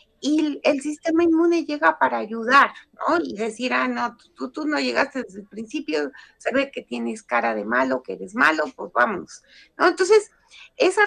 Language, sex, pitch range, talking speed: Spanish, female, 230-310 Hz, 180 wpm